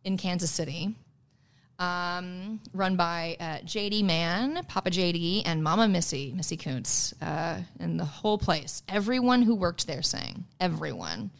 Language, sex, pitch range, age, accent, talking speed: English, female, 150-185 Hz, 30-49, American, 140 wpm